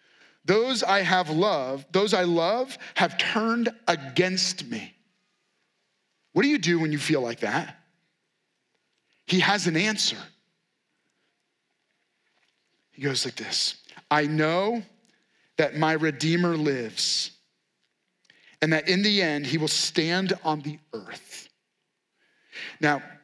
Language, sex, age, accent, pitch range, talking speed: English, male, 40-59, American, 160-235 Hz, 120 wpm